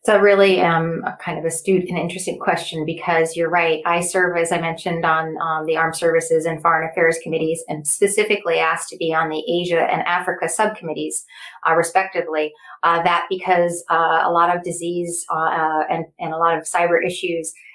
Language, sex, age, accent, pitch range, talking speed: English, female, 30-49, American, 160-180 Hz, 195 wpm